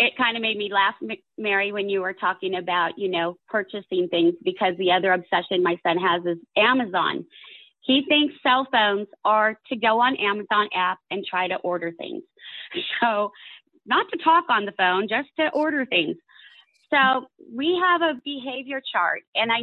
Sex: female